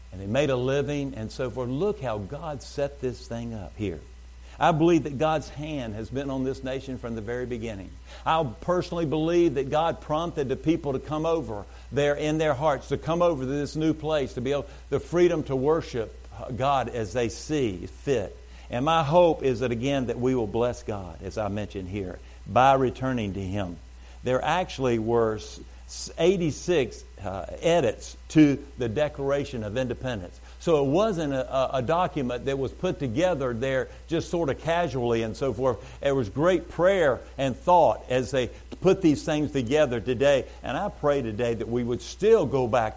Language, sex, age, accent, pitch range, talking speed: English, male, 50-69, American, 115-150 Hz, 185 wpm